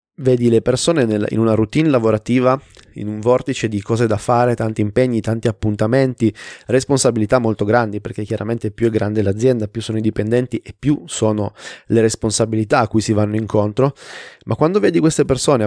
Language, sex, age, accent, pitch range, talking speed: Italian, male, 20-39, native, 110-135 Hz, 175 wpm